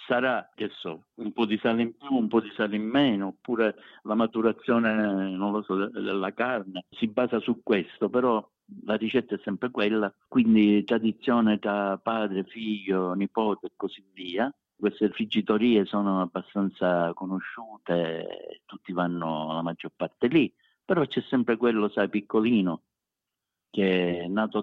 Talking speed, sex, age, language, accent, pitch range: 150 wpm, male, 50-69, Italian, native, 90-110 Hz